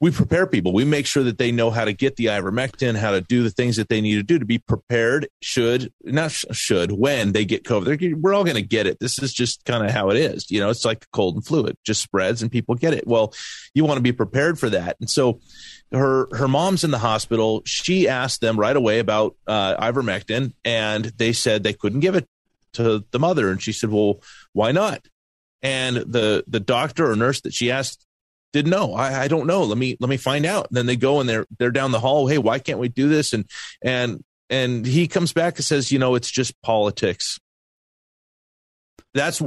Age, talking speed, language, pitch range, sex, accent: 30-49, 230 wpm, English, 110-140 Hz, male, American